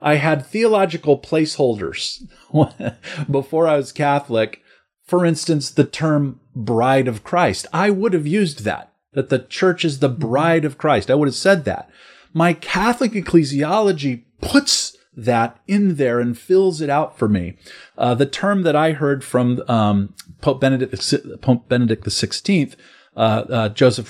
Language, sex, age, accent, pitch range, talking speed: English, male, 40-59, American, 125-170 Hz, 155 wpm